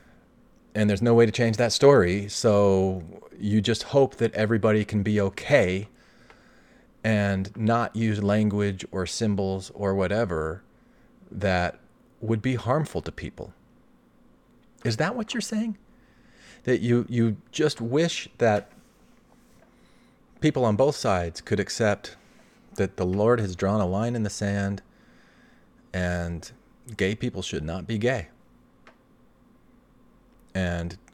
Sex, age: male, 40-59